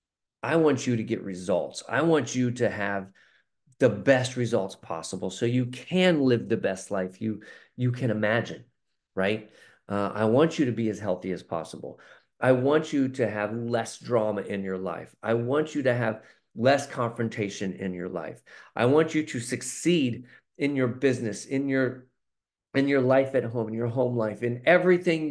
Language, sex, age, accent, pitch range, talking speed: English, male, 40-59, American, 110-135 Hz, 185 wpm